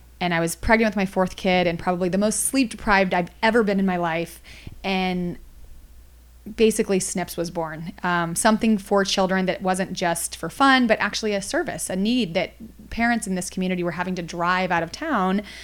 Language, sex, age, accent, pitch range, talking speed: English, female, 30-49, American, 180-215 Hz, 200 wpm